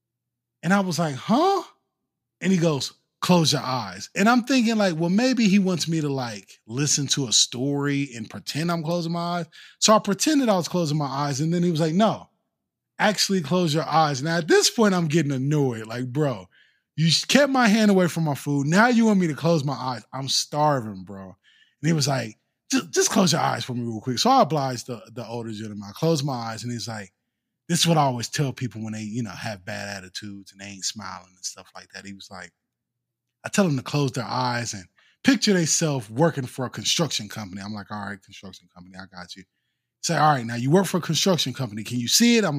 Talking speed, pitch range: 240 wpm, 110-170 Hz